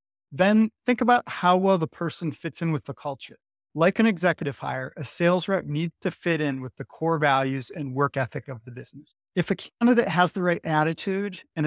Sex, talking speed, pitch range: male, 210 wpm, 140-170 Hz